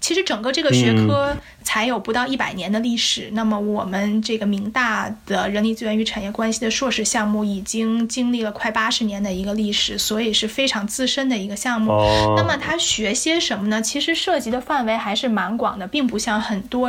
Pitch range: 215-245 Hz